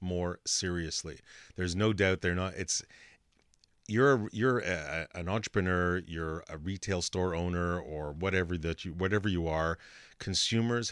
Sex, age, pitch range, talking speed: male, 40-59, 85-100 Hz, 150 wpm